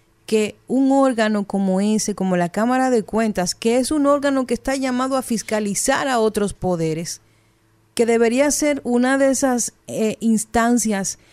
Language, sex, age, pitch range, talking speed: Spanish, female, 40-59, 195-250 Hz, 160 wpm